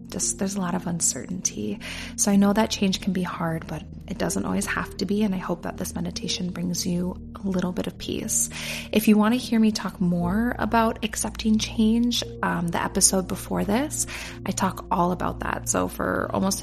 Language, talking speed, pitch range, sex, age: English, 205 wpm, 170-210 Hz, female, 20-39